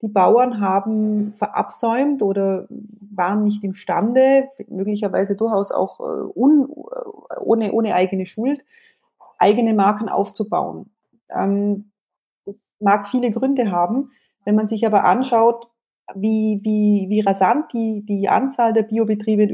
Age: 30-49